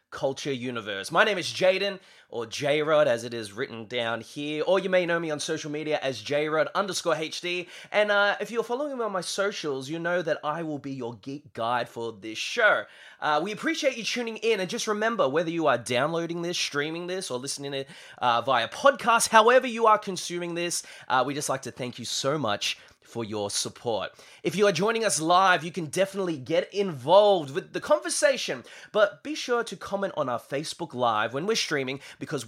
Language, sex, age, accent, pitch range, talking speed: English, male, 20-39, Australian, 135-200 Hz, 210 wpm